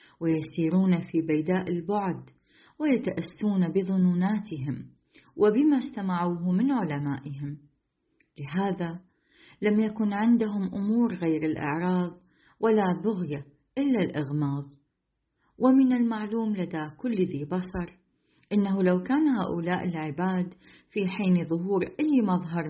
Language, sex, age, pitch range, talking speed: Arabic, female, 40-59, 160-215 Hz, 100 wpm